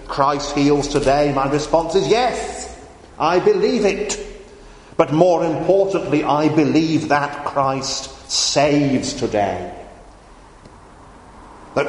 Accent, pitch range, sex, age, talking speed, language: British, 120-155 Hz, male, 40-59, 100 wpm, English